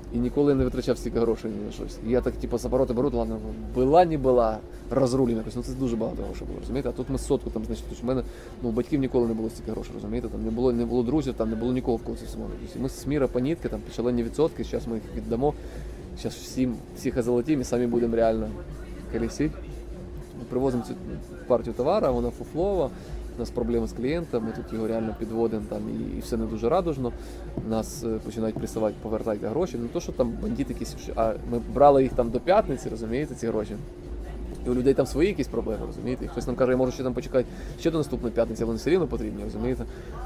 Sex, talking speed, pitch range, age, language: male, 220 wpm, 115-130 Hz, 20-39, Russian